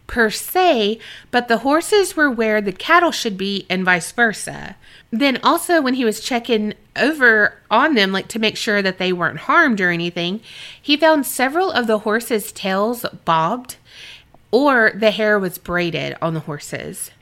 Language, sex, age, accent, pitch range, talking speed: English, female, 30-49, American, 180-240 Hz, 170 wpm